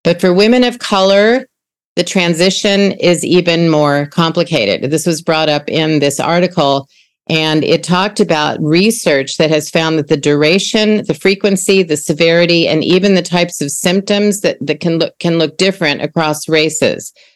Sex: female